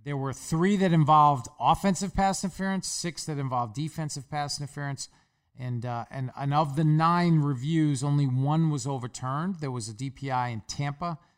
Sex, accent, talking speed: male, American, 170 wpm